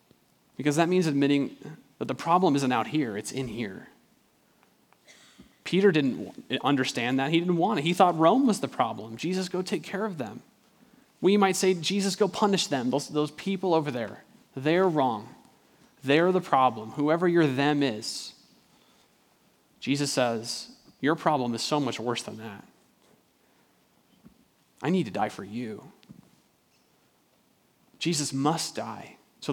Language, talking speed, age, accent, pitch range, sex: English, 150 wpm, 30-49, American, 130-185 Hz, male